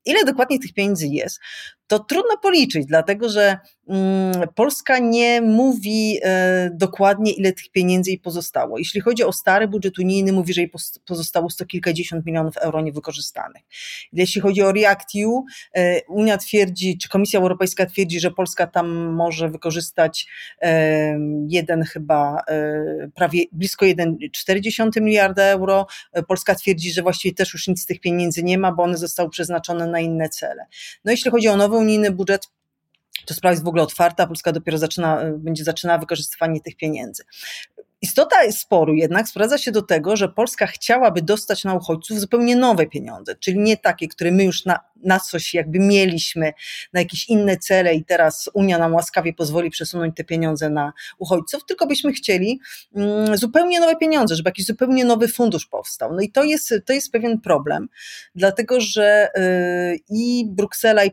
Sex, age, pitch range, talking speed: female, 30-49, 170-210 Hz, 160 wpm